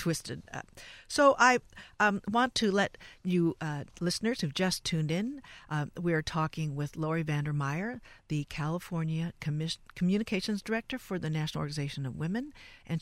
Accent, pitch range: American, 155-195 Hz